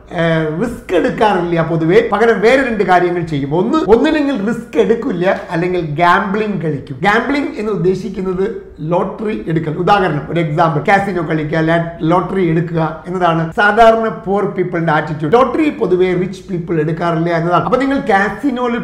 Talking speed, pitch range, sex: 120 wpm, 175-225 Hz, male